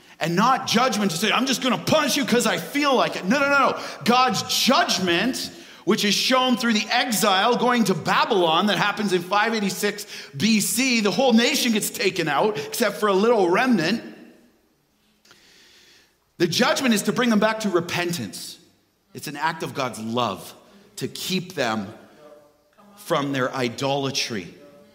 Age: 40-59